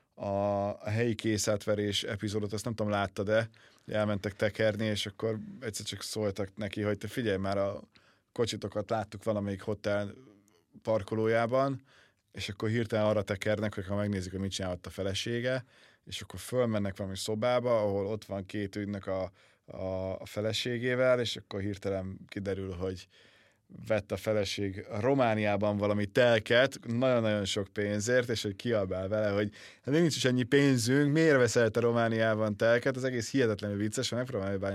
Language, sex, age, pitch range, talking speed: Hungarian, male, 20-39, 100-120 Hz, 155 wpm